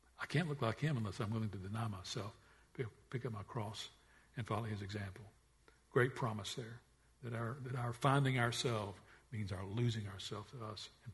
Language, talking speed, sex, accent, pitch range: English, 190 wpm, male, American, 105-130 Hz